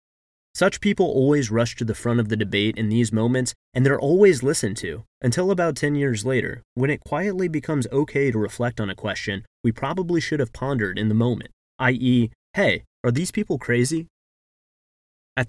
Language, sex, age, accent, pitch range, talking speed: English, male, 30-49, American, 110-150 Hz, 185 wpm